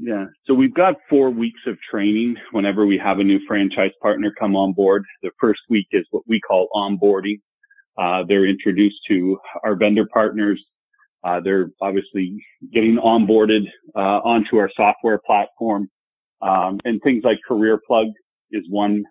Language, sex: English, male